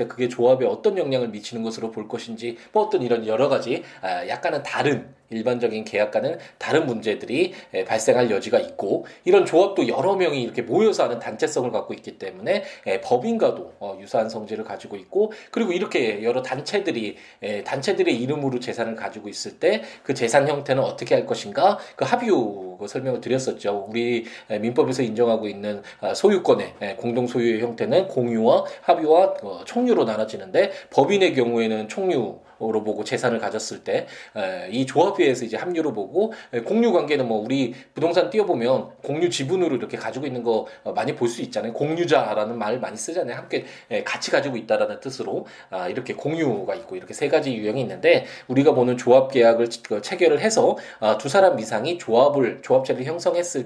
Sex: male